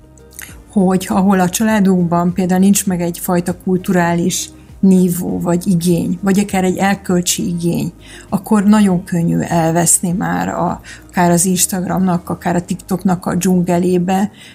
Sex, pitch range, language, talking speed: female, 175-195 Hz, Hungarian, 130 wpm